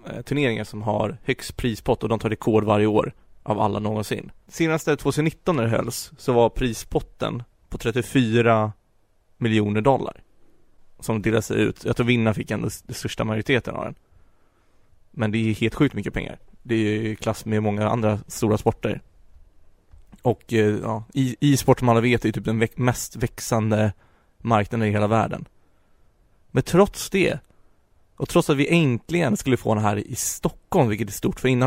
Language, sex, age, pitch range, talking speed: Swedish, male, 20-39, 105-125 Hz, 170 wpm